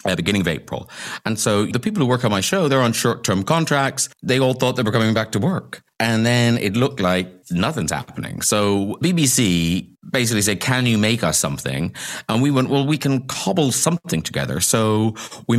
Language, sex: English, male